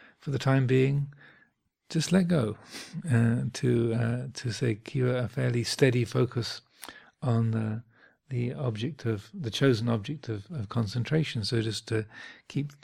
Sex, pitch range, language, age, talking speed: male, 115-130 Hz, English, 40-59, 145 wpm